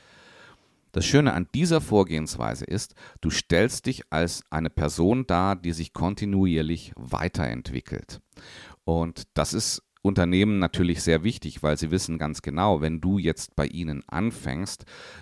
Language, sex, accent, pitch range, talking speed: German, male, German, 80-105 Hz, 140 wpm